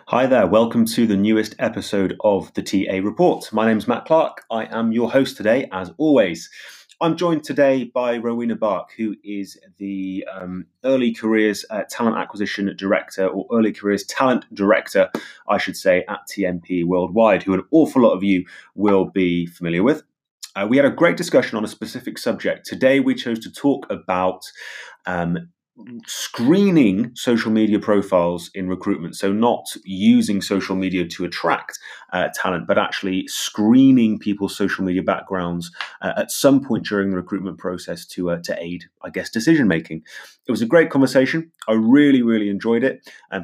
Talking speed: 175 wpm